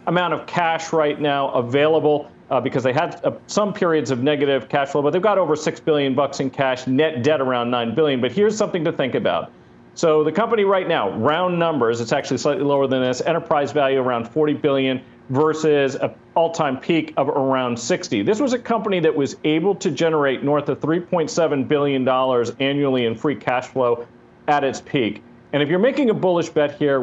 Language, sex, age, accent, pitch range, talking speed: English, male, 40-59, American, 135-170 Hz, 210 wpm